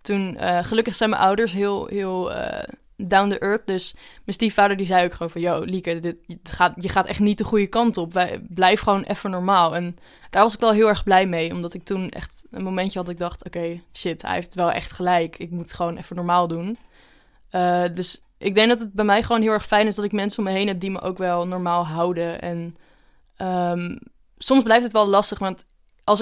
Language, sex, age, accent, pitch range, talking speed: Dutch, female, 20-39, Dutch, 180-210 Hz, 245 wpm